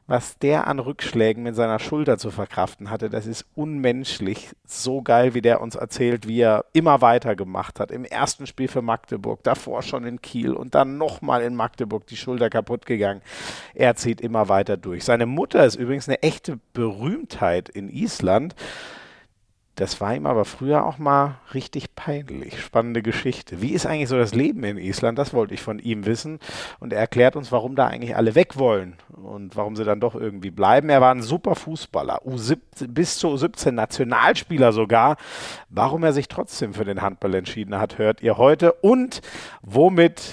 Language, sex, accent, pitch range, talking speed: German, male, German, 110-140 Hz, 185 wpm